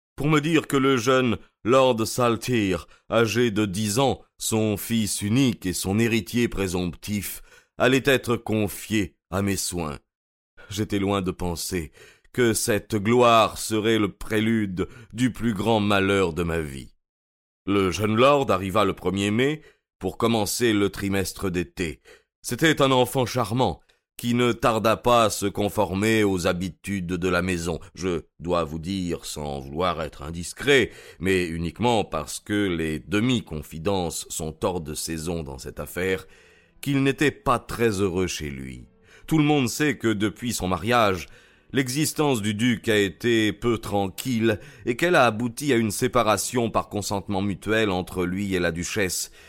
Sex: male